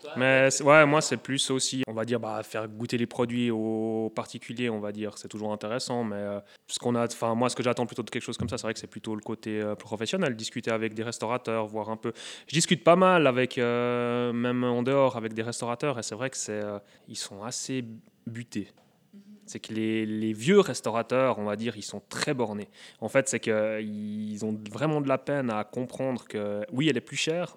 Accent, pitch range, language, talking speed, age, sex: French, 110-130 Hz, French, 230 wpm, 20-39, male